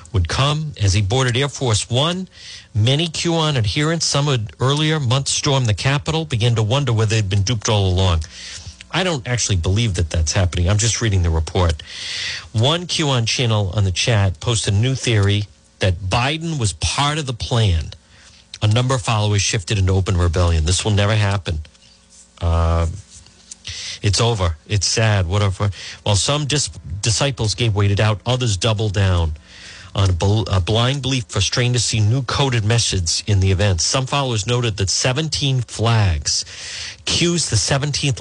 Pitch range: 95-130 Hz